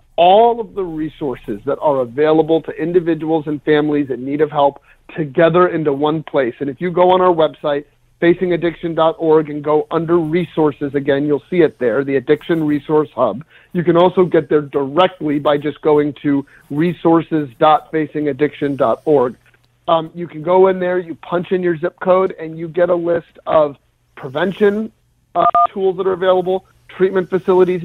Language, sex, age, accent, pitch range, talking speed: English, male, 40-59, American, 150-180 Hz, 165 wpm